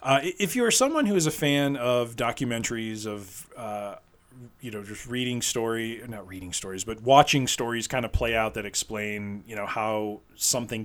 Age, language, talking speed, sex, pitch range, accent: 20-39, English, 185 wpm, male, 105-125 Hz, American